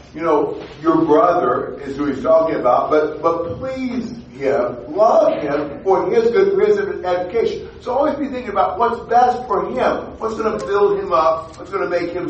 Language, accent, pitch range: English, American, 150-235 Hz